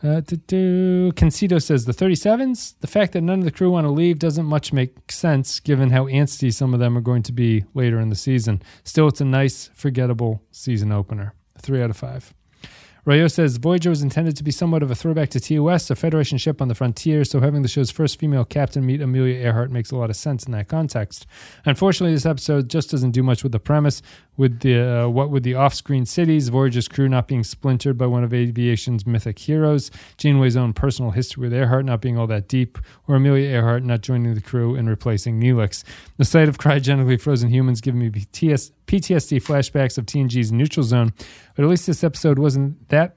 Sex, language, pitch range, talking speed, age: male, English, 120-150 Hz, 215 wpm, 30-49